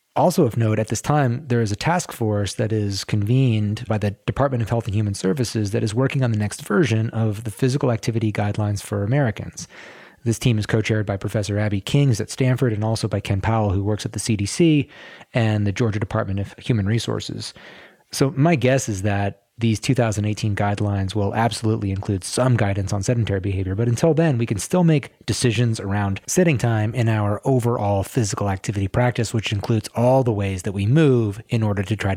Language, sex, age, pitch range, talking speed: English, male, 30-49, 105-125 Hz, 200 wpm